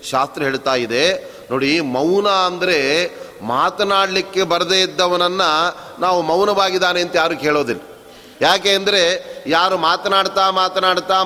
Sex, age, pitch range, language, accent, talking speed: male, 30-49, 170-195 Hz, Kannada, native, 100 wpm